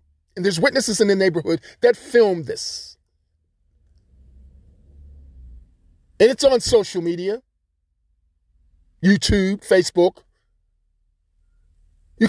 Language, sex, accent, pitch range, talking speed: English, male, American, 145-235 Hz, 85 wpm